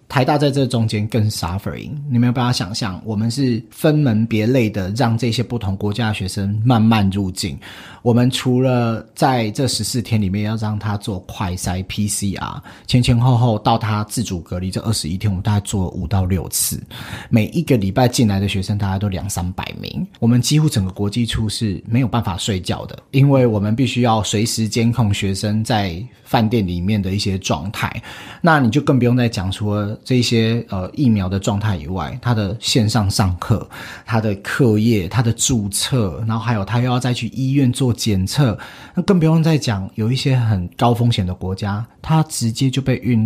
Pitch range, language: 100-125 Hz, Chinese